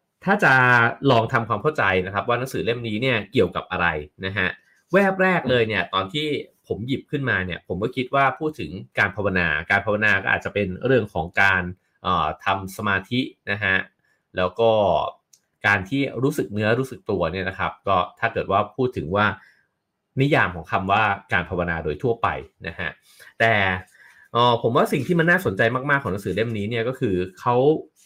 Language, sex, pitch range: English, male, 95-130 Hz